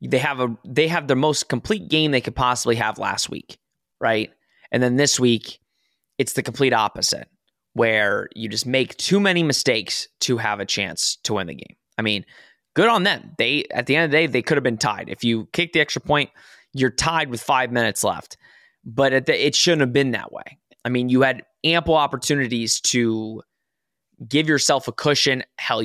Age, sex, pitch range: 20-39, male, 120-150 Hz